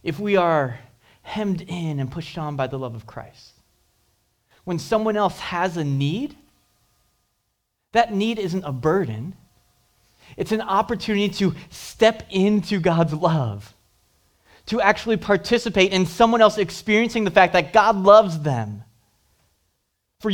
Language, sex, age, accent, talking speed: English, male, 30-49, American, 135 wpm